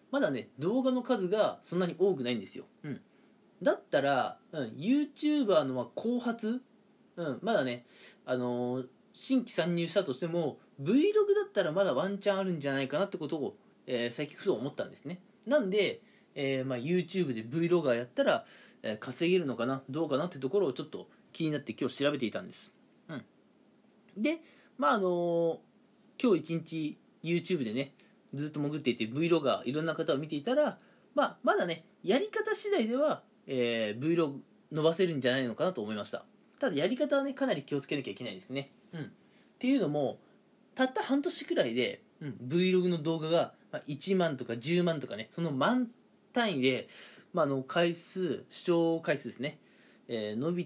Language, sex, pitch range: Japanese, male, 140-225 Hz